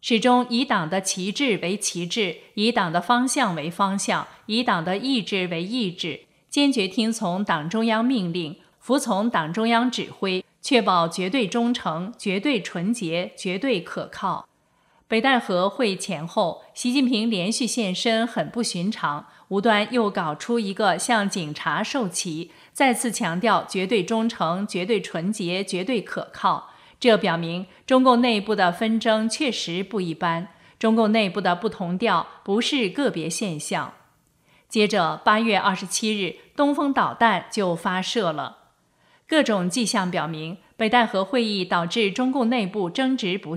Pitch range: 180-235 Hz